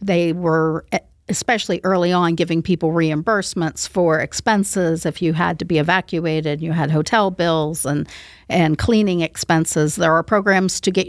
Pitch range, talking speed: 165-190 Hz, 155 wpm